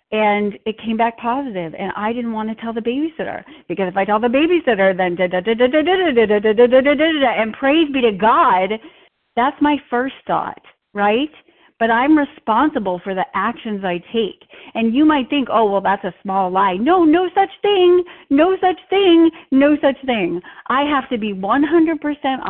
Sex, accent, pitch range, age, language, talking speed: female, American, 205-275 Hz, 40-59, English, 170 wpm